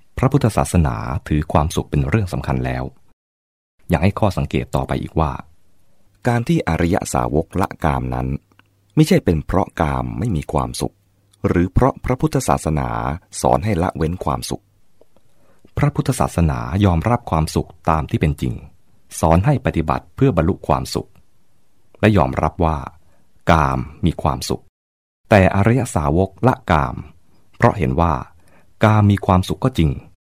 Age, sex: 30-49, male